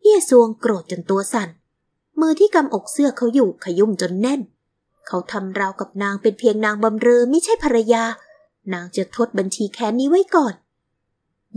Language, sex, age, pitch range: Thai, female, 20-39, 200-280 Hz